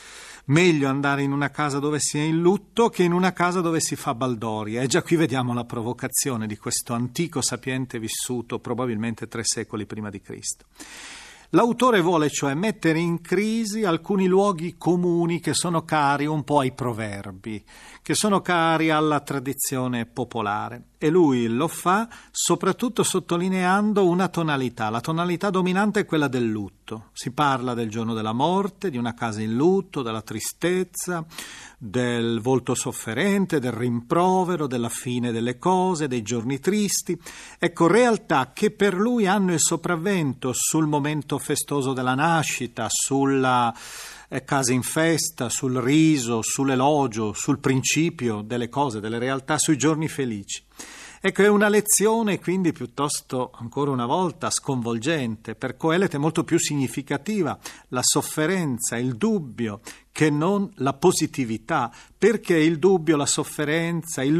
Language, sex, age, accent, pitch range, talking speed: Italian, male, 40-59, native, 125-175 Hz, 145 wpm